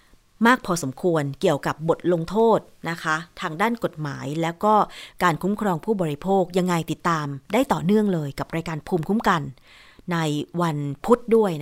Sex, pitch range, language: female, 155-200 Hz, Thai